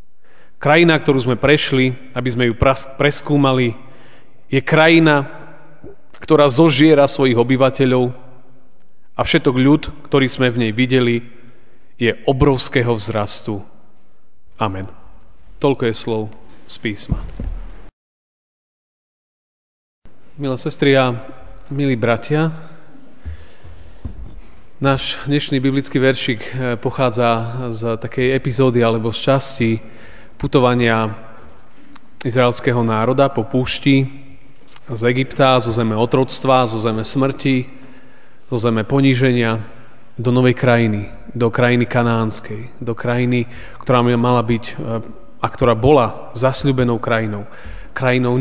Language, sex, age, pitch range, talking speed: Slovak, male, 30-49, 115-135 Hz, 100 wpm